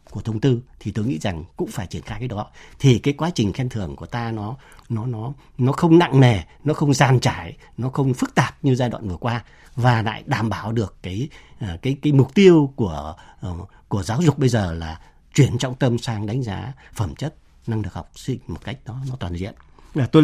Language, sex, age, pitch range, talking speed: Vietnamese, male, 60-79, 105-150 Hz, 230 wpm